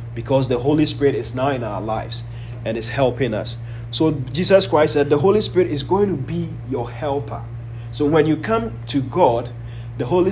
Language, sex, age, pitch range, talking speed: English, male, 30-49, 115-165 Hz, 200 wpm